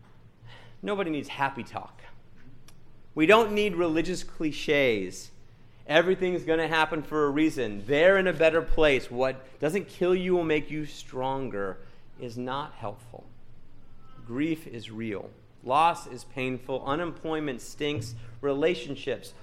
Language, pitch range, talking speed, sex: English, 115-165 Hz, 125 wpm, male